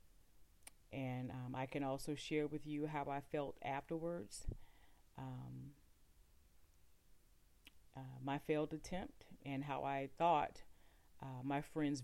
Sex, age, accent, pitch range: female, 40-59, American, 125-150 Hz